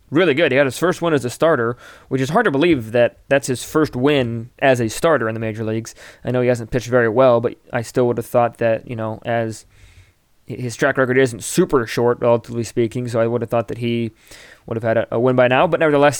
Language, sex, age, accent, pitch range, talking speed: English, male, 20-39, American, 115-135 Hz, 250 wpm